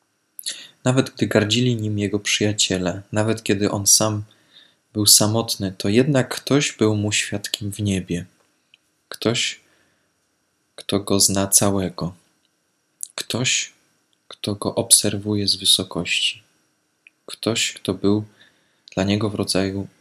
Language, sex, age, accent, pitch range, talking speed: Polish, male, 20-39, native, 95-110 Hz, 115 wpm